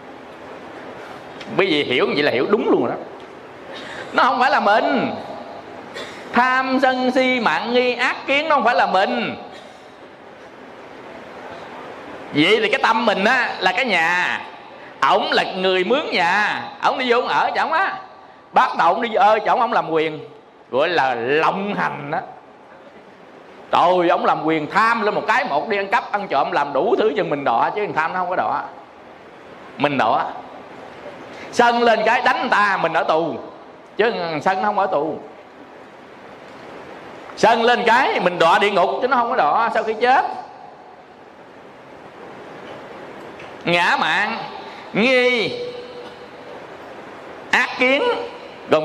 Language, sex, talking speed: Vietnamese, male, 155 wpm